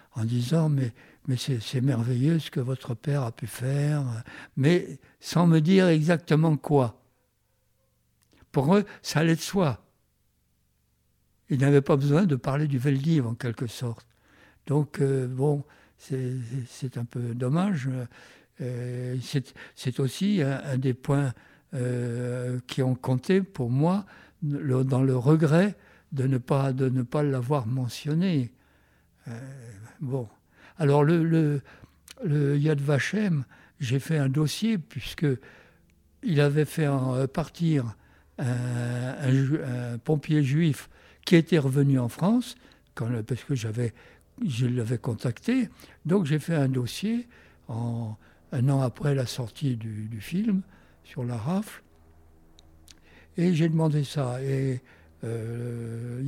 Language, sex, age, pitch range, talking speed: French, male, 60-79, 120-150 Hz, 140 wpm